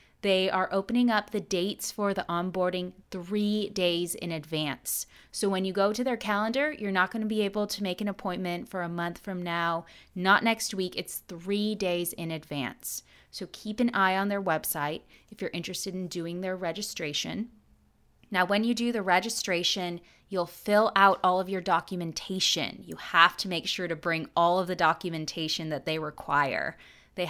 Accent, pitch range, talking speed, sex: American, 170-200 Hz, 185 wpm, female